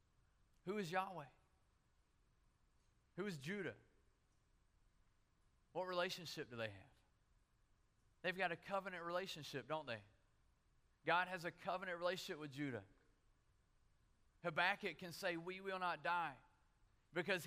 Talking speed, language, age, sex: 115 wpm, English, 30-49, male